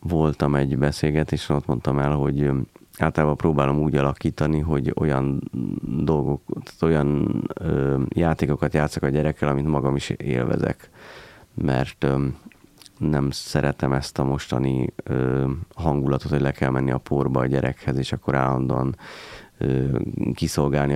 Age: 30-49